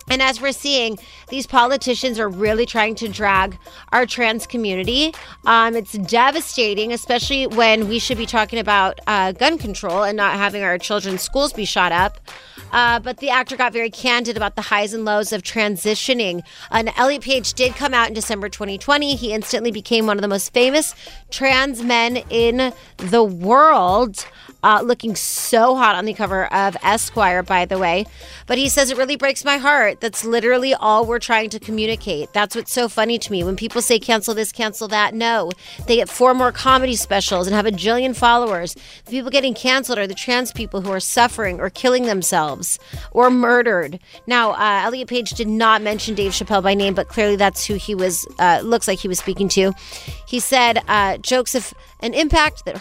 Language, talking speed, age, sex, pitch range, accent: English, 195 wpm, 30-49, female, 205-250 Hz, American